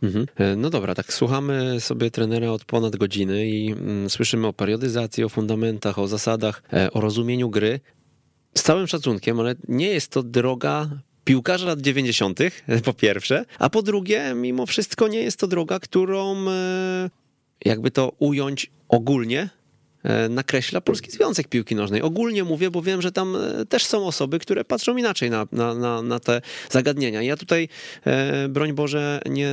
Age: 30-49